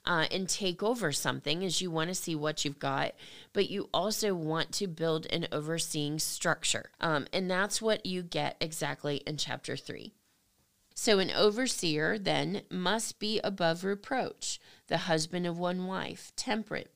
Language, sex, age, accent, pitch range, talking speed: English, female, 30-49, American, 160-210 Hz, 165 wpm